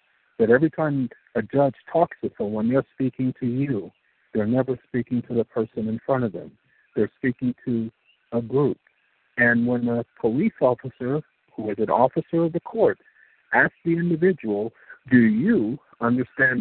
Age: 50-69